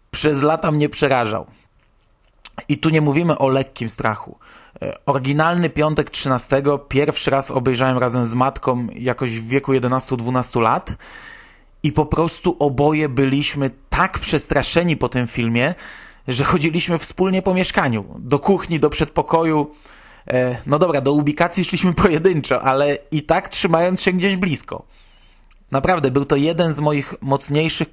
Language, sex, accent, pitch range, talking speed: Polish, male, native, 130-165 Hz, 140 wpm